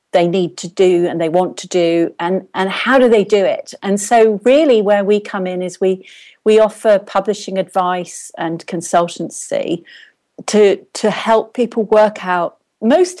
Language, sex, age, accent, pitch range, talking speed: English, female, 40-59, British, 170-215 Hz, 175 wpm